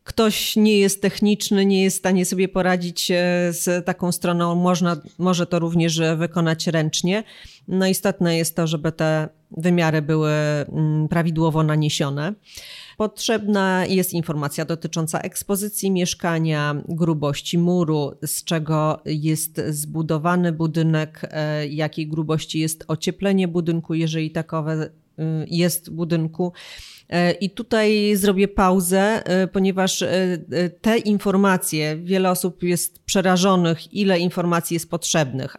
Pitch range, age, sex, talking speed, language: 165-185 Hz, 40-59, female, 115 wpm, Polish